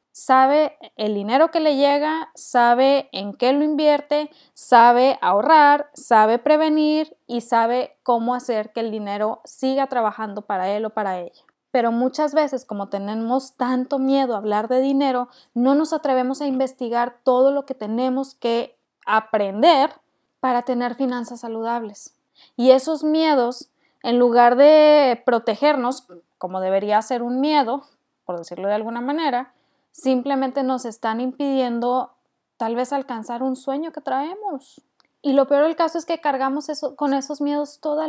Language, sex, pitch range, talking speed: Spanish, female, 245-295 Hz, 150 wpm